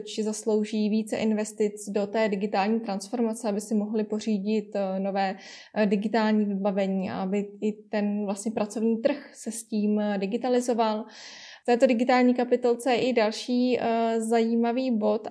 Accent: native